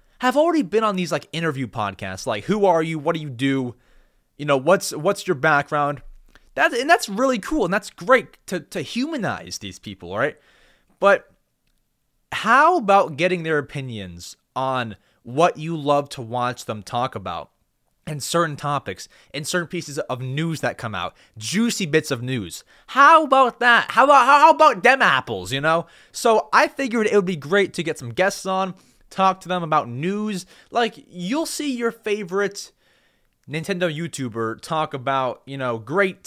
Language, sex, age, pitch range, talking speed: English, male, 20-39, 125-200 Hz, 175 wpm